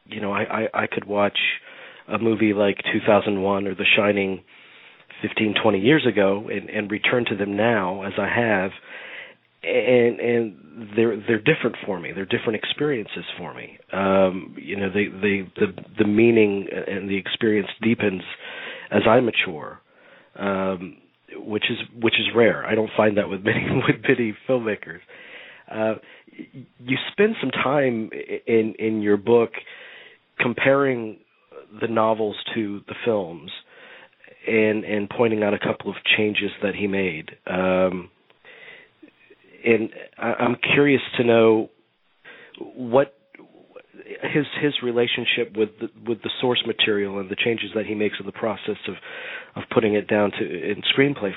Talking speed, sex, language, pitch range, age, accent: 150 wpm, male, English, 100-120 Hz, 40-59, American